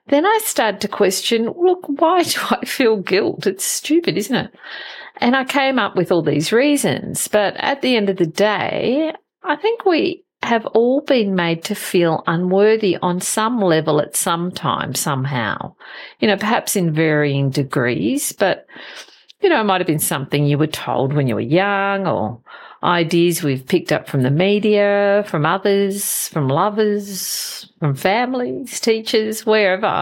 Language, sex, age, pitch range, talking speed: English, female, 50-69, 170-240 Hz, 170 wpm